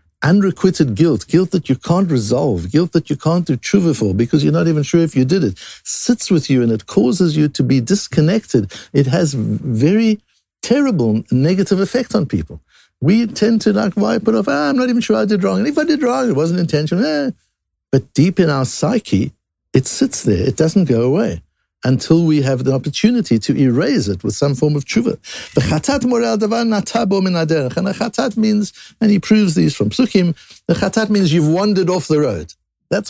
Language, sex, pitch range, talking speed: English, male, 135-200 Hz, 200 wpm